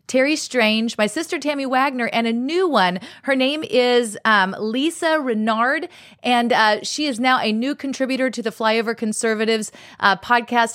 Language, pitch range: English, 220-265 Hz